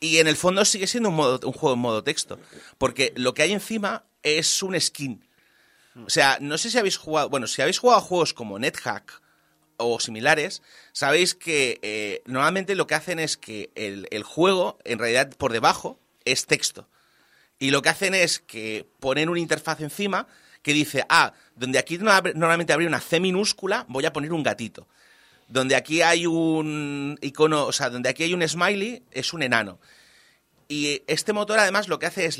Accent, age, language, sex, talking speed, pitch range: Spanish, 30-49, Spanish, male, 195 wpm, 115-165 Hz